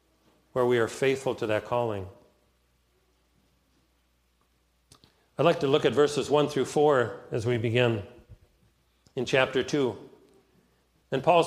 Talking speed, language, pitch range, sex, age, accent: 125 wpm, English, 110-150 Hz, male, 50-69, American